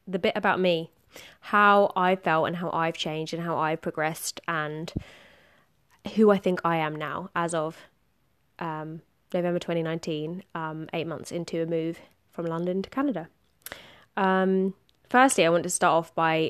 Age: 20-39